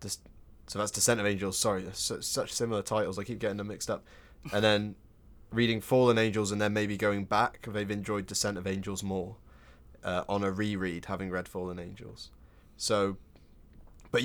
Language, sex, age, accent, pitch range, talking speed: English, male, 10-29, British, 95-110 Hz, 175 wpm